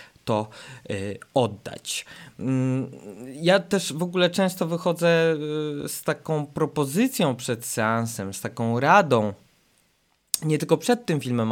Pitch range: 115-150 Hz